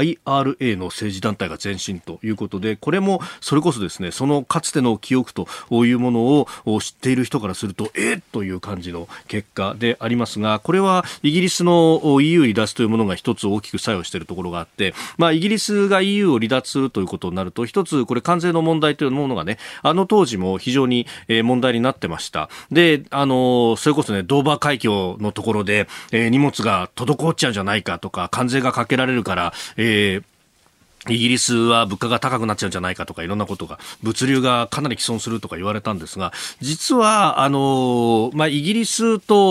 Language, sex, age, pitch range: Japanese, male, 40-59, 105-165 Hz